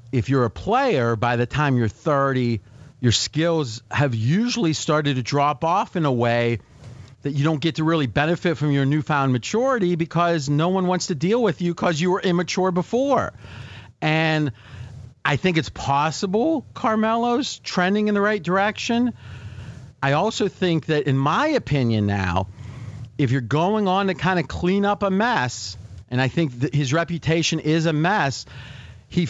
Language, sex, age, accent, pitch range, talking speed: English, male, 40-59, American, 125-170 Hz, 170 wpm